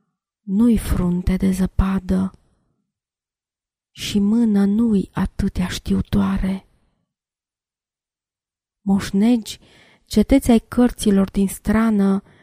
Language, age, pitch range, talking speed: Romanian, 20-39, 185-205 Hz, 70 wpm